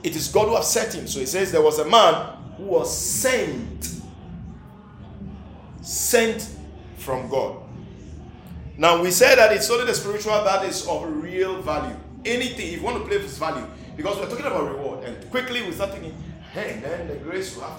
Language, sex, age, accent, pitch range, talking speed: English, male, 50-69, Nigerian, 185-240 Hz, 190 wpm